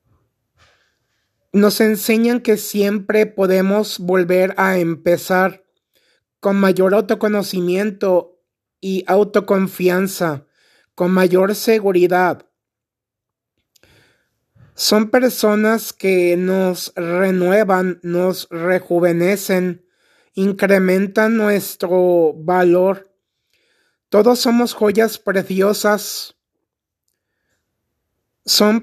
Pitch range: 180-210 Hz